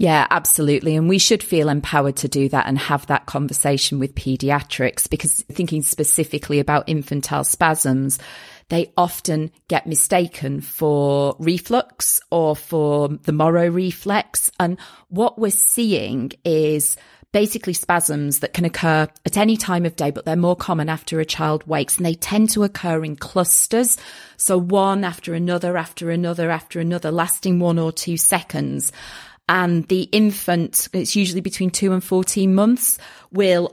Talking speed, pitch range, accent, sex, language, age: 155 wpm, 155-185 Hz, British, female, English, 30-49